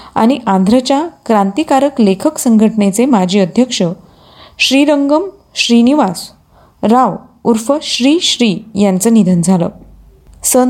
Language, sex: Marathi, female